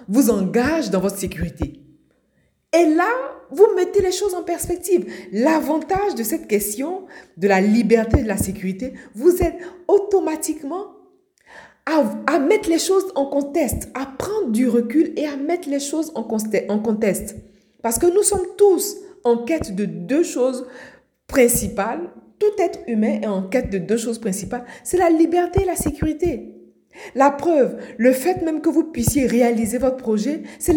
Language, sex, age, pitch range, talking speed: French, female, 50-69, 225-330 Hz, 165 wpm